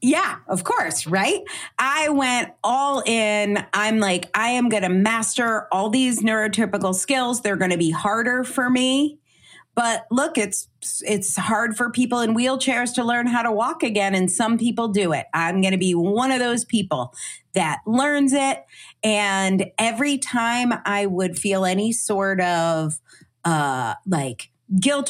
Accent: American